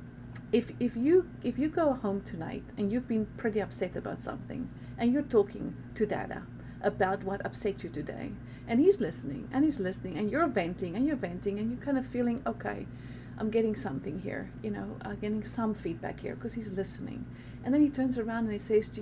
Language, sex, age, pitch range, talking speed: English, female, 40-59, 195-265 Hz, 210 wpm